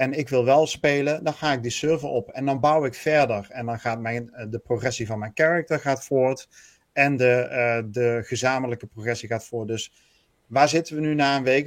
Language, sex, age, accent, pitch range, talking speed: Dutch, male, 40-59, Dutch, 120-145 Hz, 205 wpm